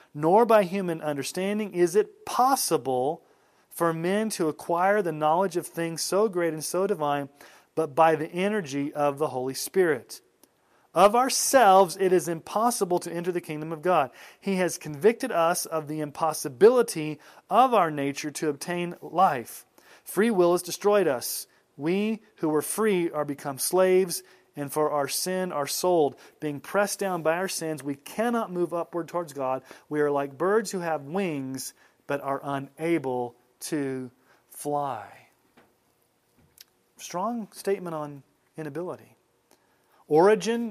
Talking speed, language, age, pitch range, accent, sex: 145 wpm, English, 40-59, 145-190 Hz, American, male